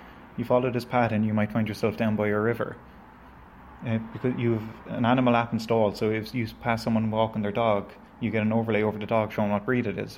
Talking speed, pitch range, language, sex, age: 225 wpm, 105-115 Hz, English, male, 20-39